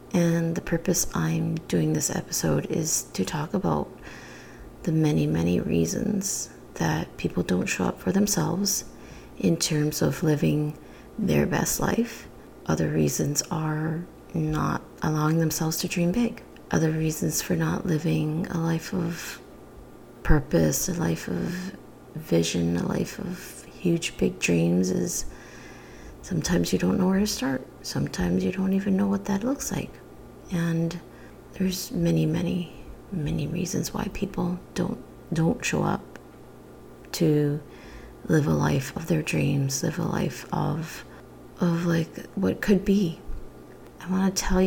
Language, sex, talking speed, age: English, female, 140 wpm, 30-49